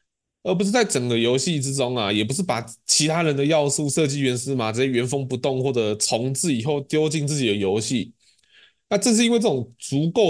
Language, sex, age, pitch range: Chinese, male, 20-39, 110-145 Hz